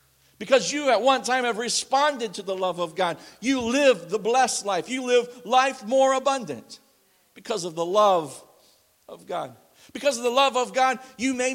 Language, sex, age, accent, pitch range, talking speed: English, male, 50-69, American, 205-265 Hz, 185 wpm